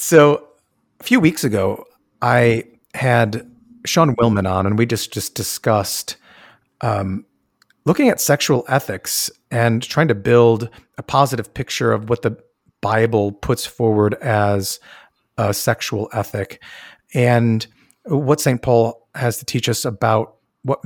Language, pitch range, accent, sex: English, 100-125 Hz, American, male